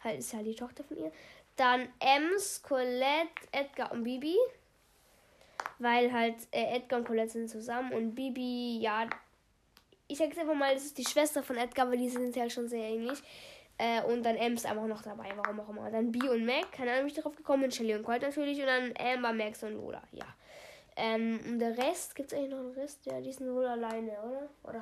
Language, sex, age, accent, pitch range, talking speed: German, female, 10-29, German, 230-275 Hz, 210 wpm